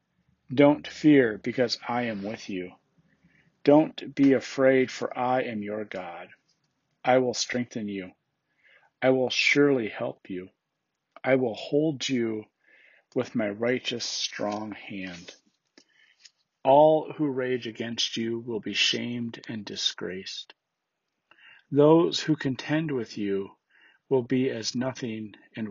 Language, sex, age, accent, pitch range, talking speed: English, male, 40-59, American, 110-135 Hz, 125 wpm